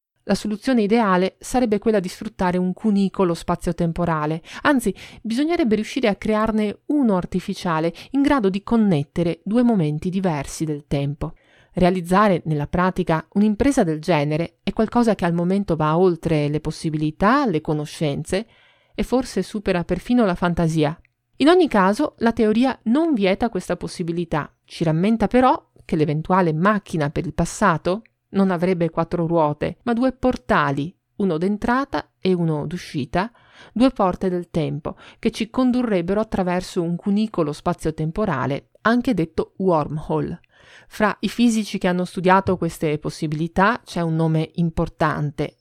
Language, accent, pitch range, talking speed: Italian, native, 165-215 Hz, 140 wpm